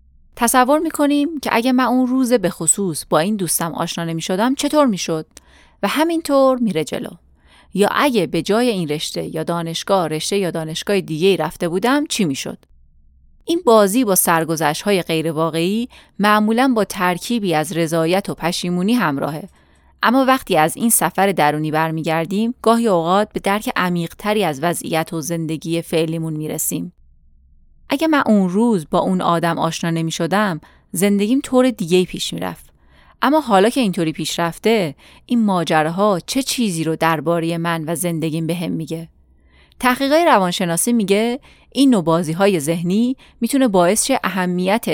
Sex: female